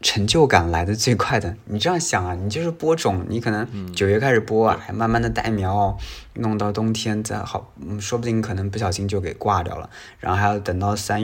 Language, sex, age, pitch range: Chinese, male, 20-39, 95-120 Hz